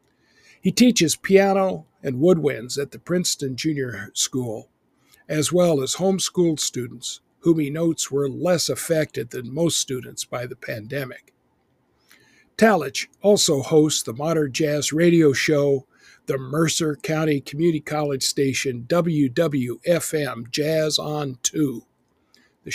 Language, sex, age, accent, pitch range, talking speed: English, male, 60-79, American, 140-170 Hz, 120 wpm